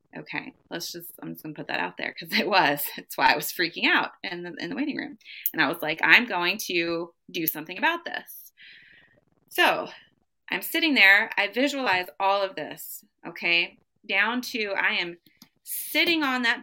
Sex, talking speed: female, 190 wpm